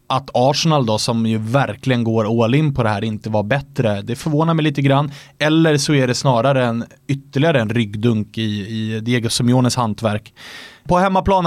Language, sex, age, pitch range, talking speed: English, male, 20-39, 115-140 Hz, 185 wpm